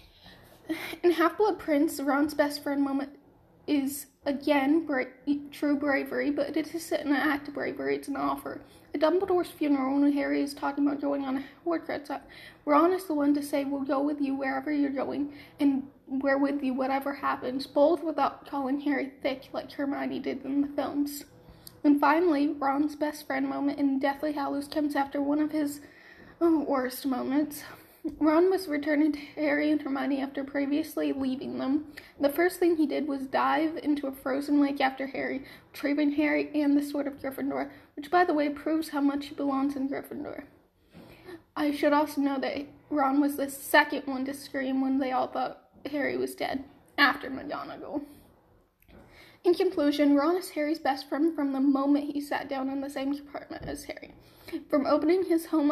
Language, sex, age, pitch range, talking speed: English, female, 10-29, 275-300 Hz, 180 wpm